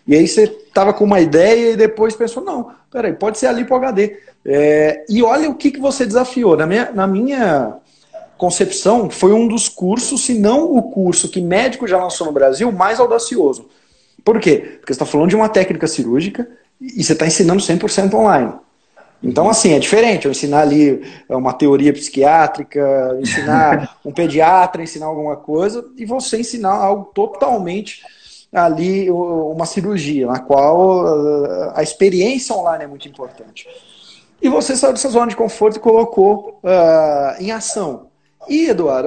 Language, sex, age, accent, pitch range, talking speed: Portuguese, male, 40-59, Brazilian, 155-235 Hz, 165 wpm